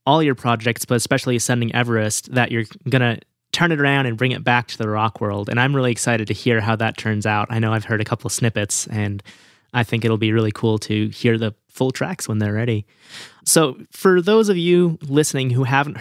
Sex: male